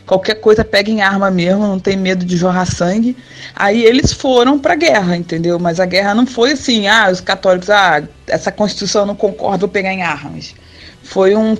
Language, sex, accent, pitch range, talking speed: Portuguese, female, Brazilian, 195-250 Hz, 195 wpm